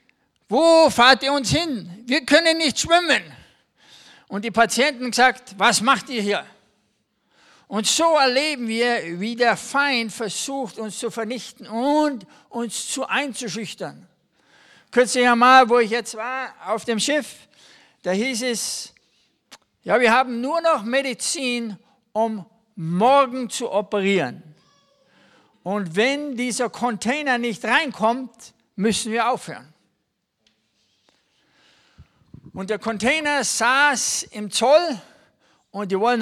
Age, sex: 60-79, male